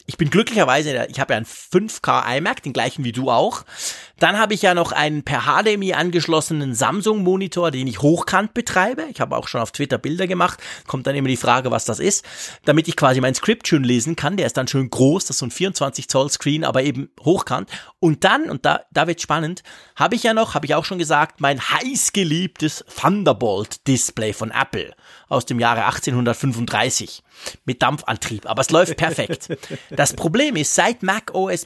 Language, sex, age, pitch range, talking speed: German, male, 30-49, 135-180 Hz, 195 wpm